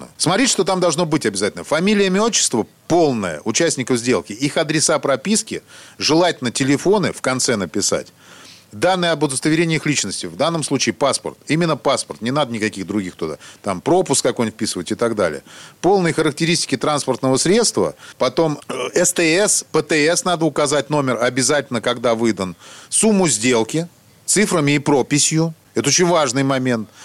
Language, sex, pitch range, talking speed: Russian, male, 120-165 Hz, 145 wpm